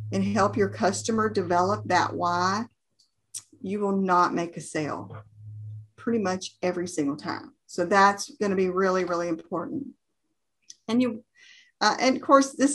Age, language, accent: 40-59, English, American